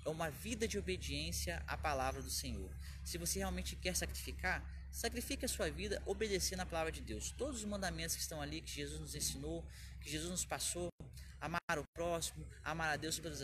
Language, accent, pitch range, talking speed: Portuguese, Brazilian, 120-170 Hz, 195 wpm